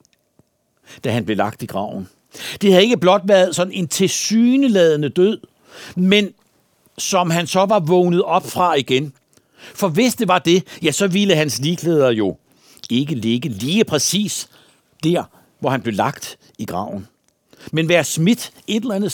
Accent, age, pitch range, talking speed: native, 60-79, 150-200 Hz, 165 wpm